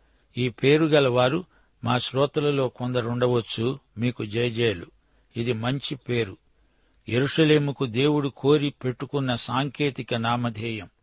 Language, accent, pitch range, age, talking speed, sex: Telugu, native, 120-140 Hz, 60-79, 100 wpm, male